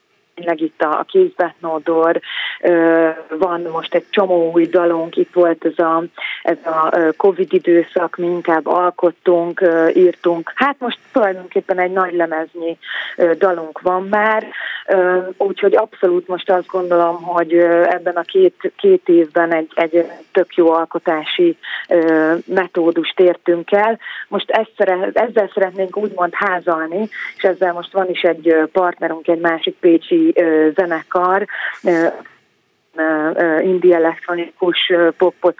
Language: Hungarian